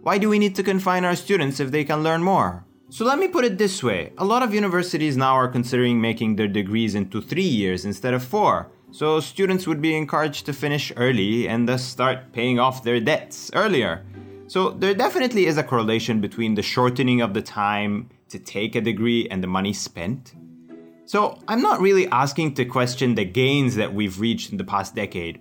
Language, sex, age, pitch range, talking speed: English, male, 30-49, 110-160 Hz, 210 wpm